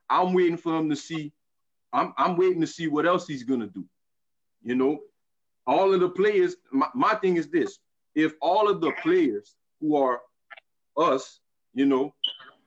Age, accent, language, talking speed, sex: 30-49, American, English, 180 wpm, male